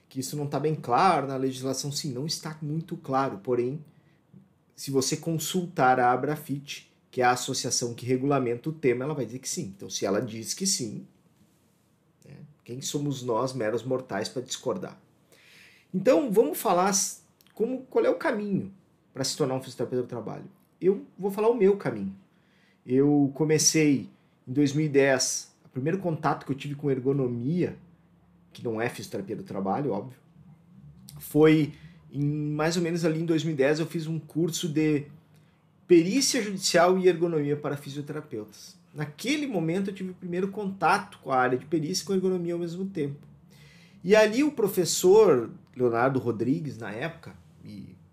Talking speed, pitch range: 165 wpm, 135-175 Hz